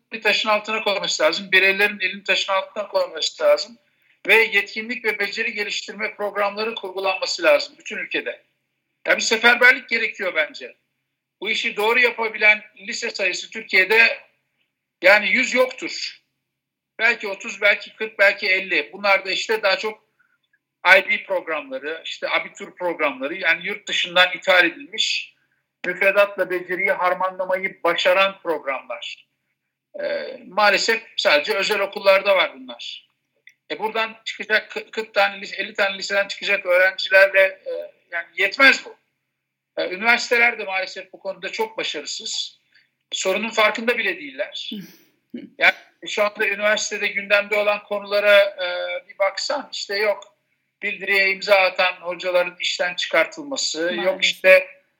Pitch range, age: 190-225 Hz, 50-69